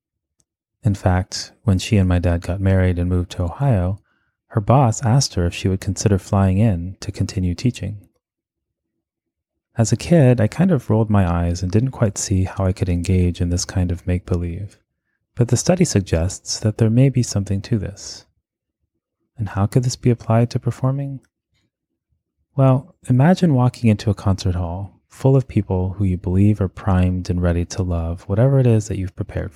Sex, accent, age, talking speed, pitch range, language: male, American, 30-49, 185 wpm, 95-115 Hz, English